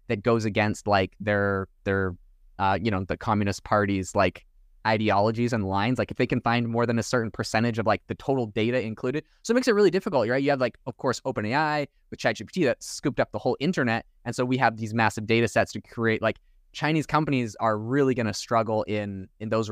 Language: English